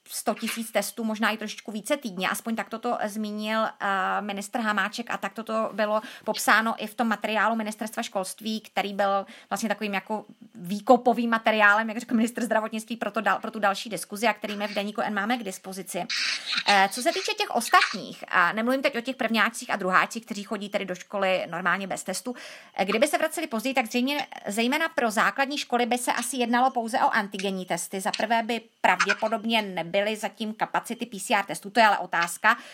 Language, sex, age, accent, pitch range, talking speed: Czech, female, 30-49, native, 205-235 Hz, 190 wpm